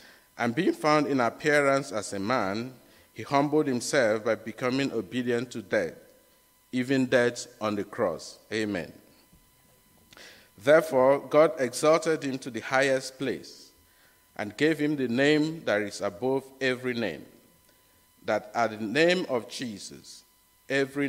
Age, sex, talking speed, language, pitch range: 50-69, male, 135 wpm, English, 110-140 Hz